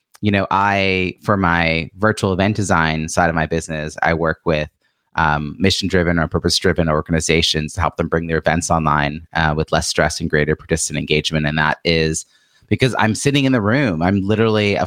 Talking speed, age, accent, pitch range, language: 190 wpm, 30-49, American, 80-95 Hz, English